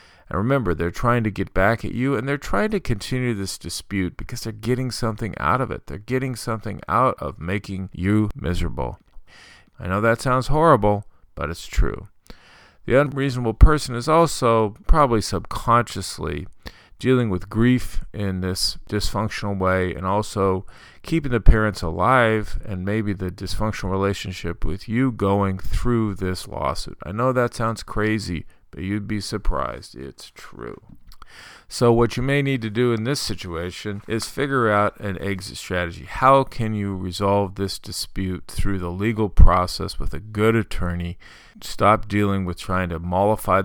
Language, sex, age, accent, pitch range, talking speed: English, male, 40-59, American, 90-115 Hz, 160 wpm